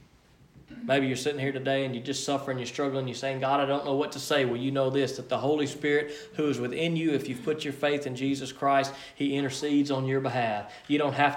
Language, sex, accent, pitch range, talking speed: English, male, American, 135-170 Hz, 255 wpm